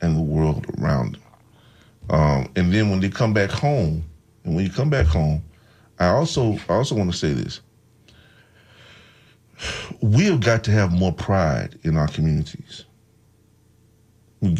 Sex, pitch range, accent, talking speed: male, 80-110 Hz, American, 150 wpm